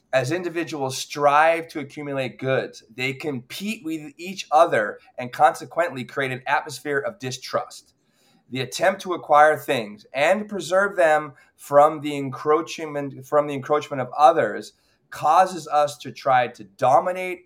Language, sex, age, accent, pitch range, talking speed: English, male, 20-39, American, 125-155 Hz, 140 wpm